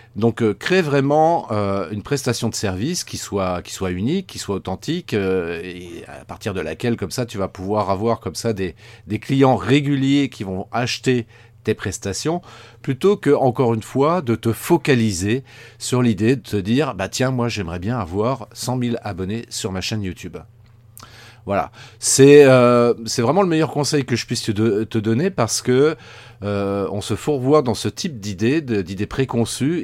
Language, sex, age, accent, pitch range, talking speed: French, male, 40-59, French, 105-135 Hz, 180 wpm